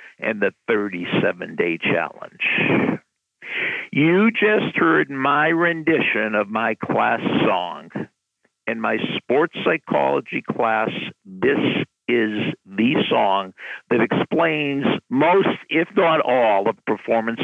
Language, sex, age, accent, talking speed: English, male, 60-79, American, 105 wpm